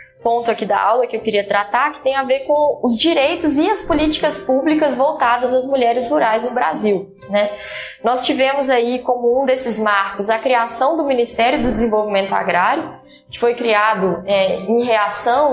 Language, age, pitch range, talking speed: Portuguese, 10-29, 220-270 Hz, 180 wpm